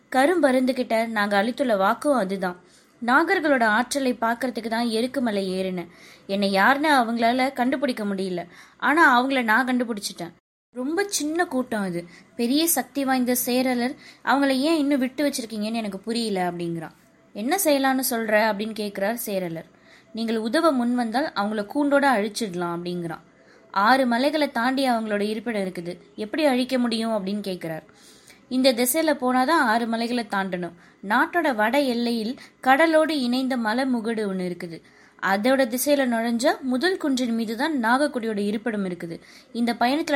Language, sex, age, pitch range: Tamil, female, 20-39, 205-270 Hz